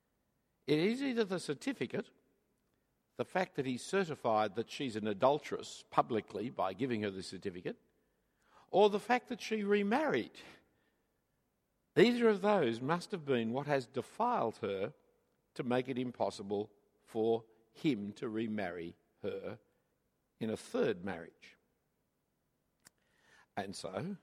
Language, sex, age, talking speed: English, male, 60-79, 125 wpm